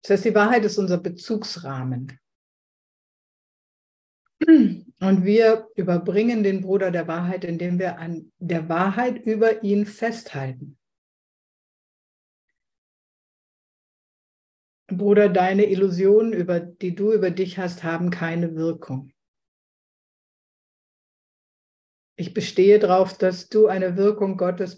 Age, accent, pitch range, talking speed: 60-79, German, 175-210 Hz, 100 wpm